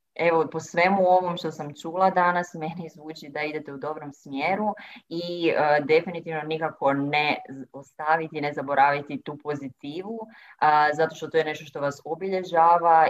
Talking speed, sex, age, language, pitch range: 155 wpm, female, 20-39, Croatian, 150-180 Hz